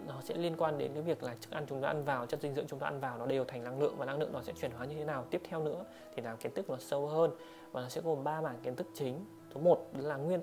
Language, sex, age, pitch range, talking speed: Vietnamese, male, 20-39, 130-160 Hz, 340 wpm